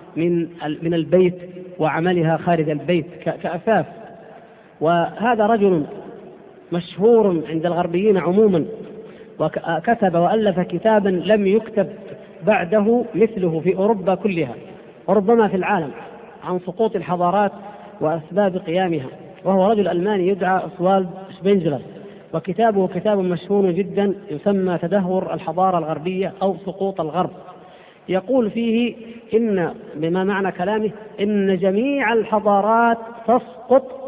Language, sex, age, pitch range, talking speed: Arabic, female, 40-59, 175-215 Hz, 95 wpm